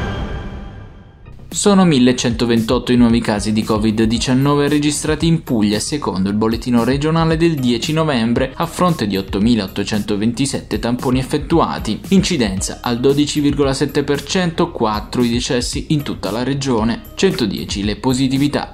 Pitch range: 105-145 Hz